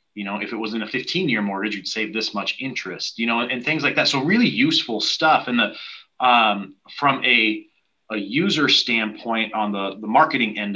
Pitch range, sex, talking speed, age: 105-130 Hz, male, 210 wpm, 30-49